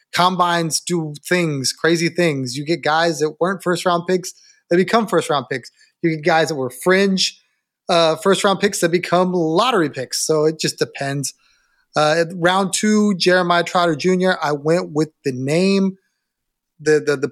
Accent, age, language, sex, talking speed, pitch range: American, 30-49, English, male, 175 wpm, 155-185 Hz